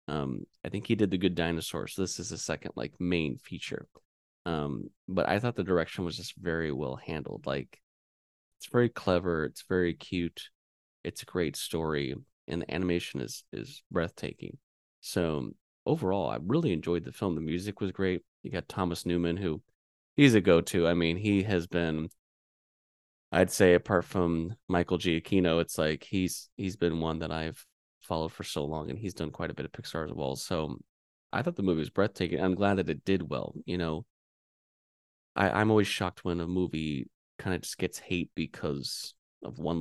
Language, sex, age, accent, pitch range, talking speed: English, male, 20-39, American, 80-95 Hz, 190 wpm